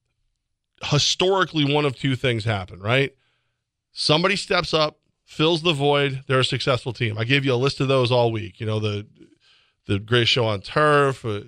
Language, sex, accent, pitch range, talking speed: English, male, American, 120-150 Hz, 185 wpm